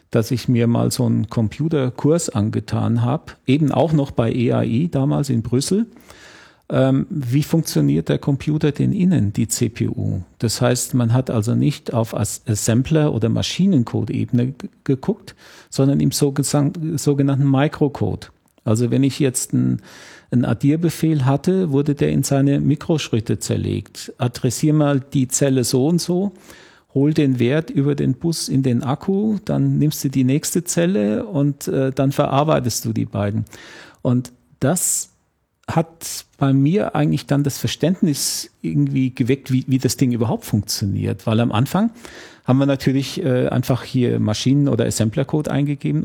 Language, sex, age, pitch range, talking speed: German, male, 40-59, 115-145 Hz, 145 wpm